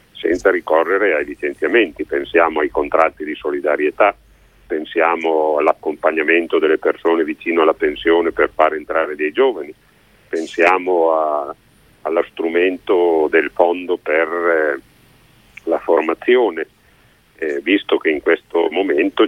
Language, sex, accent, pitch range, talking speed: Italian, male, native, 355-420 Hz, 110 wpm